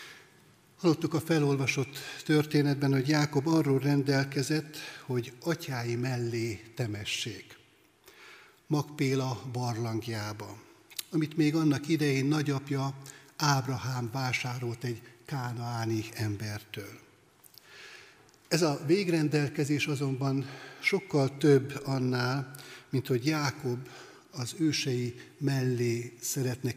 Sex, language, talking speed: male, Hungarian, 85 wpm